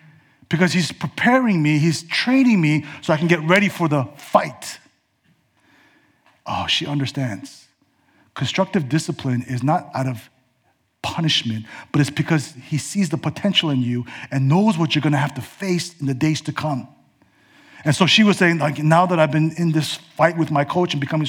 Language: English